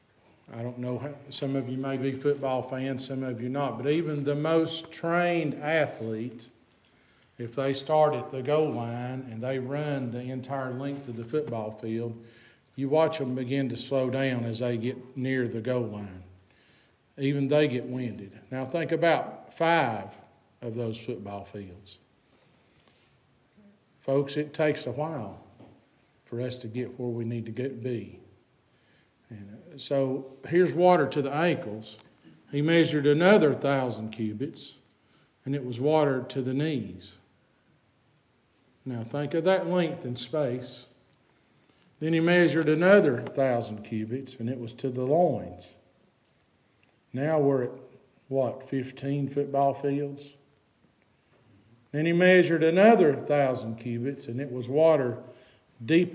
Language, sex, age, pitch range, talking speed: English, male, 50-69, 120-145 Hz, 140 wpm